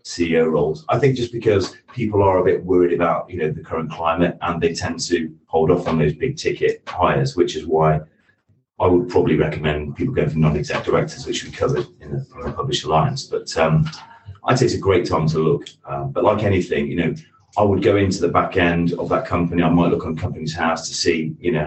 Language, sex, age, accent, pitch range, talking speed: English, male, 30-49, British, 80-90 Hz, 230 wpm